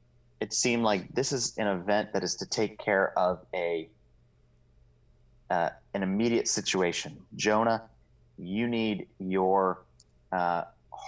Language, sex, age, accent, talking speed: English, male, 30-49, American, 125 wpm